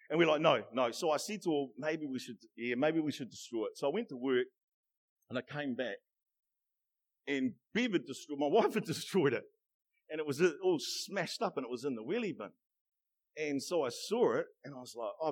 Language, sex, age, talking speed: English, male, 50-69, 235 wpm